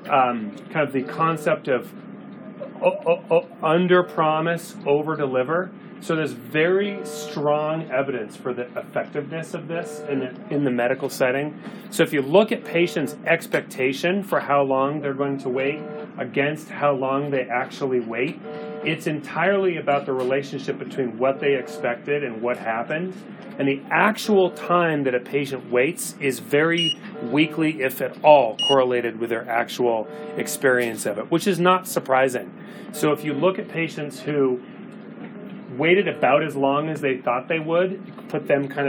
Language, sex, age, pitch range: English, male, 30-49, 130-170 Hz